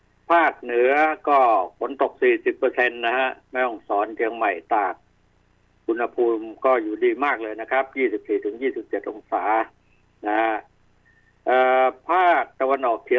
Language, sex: Thai, male